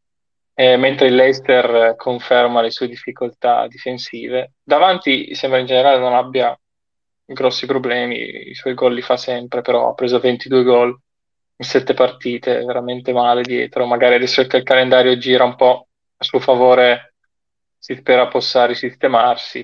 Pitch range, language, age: 120-135 Hz, Italian, 20-39